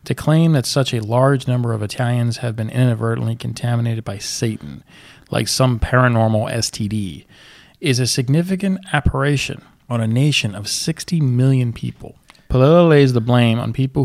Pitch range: 115-140 Hz